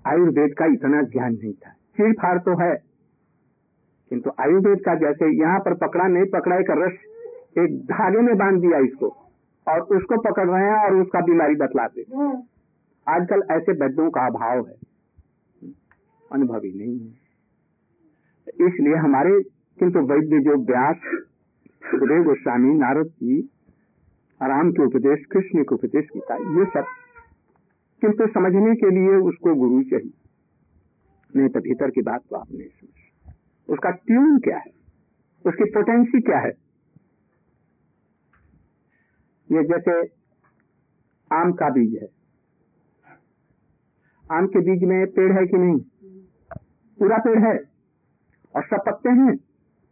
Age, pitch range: 50-69, 155-225 Hz